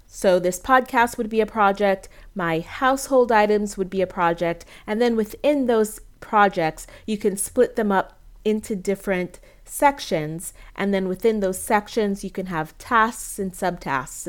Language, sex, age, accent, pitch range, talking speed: English, female, 30-49, American, 175-230 Hz, 160 wpm